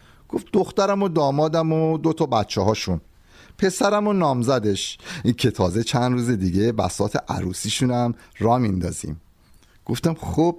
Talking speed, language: 125 wpm, Persian